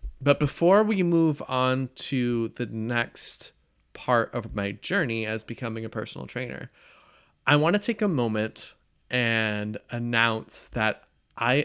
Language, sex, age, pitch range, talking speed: English, male, 30-49, 115-150 Hz, 140 wpm